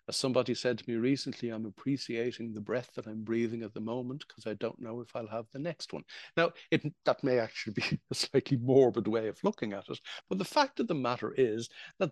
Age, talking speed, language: 60-79, 235 wpm, English